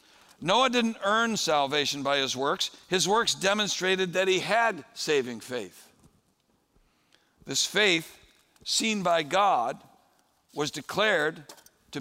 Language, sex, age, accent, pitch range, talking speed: English, male, 60-79, American, 145-190 Hz, 115 wpm